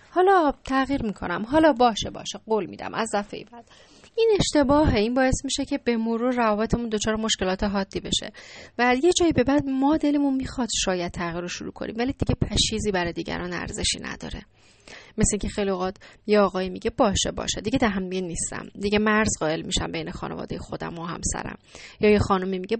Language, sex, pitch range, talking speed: Persian, female, 185-240 Hz, 175 wpm